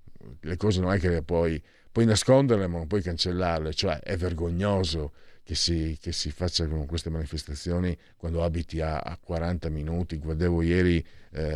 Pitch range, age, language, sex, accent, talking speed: 80-105 Hz, 50-69, Italian, male, native, 165 wpm